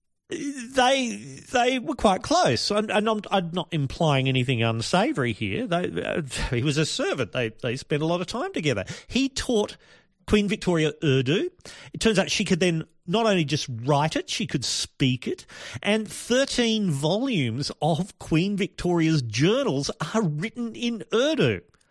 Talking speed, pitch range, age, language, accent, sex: 160 wpm, 140-195 Hz, 40-59, English, Australian, male